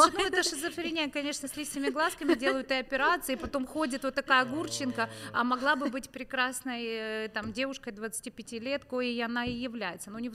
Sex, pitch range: female, 225-270 Hz